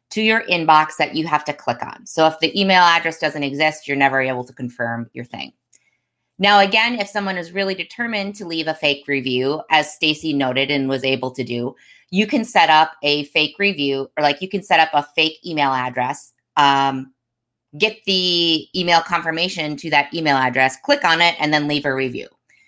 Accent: American